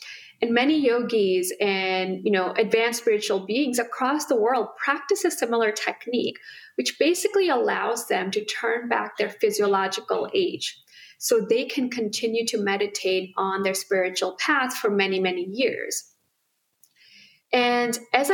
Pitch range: 200-310 Hz